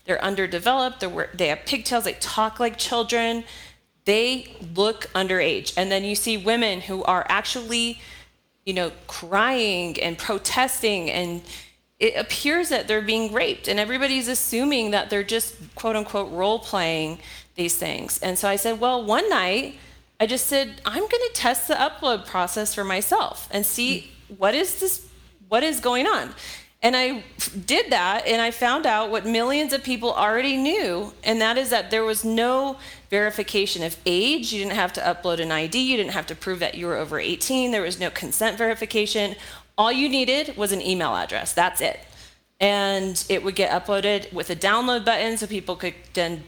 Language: English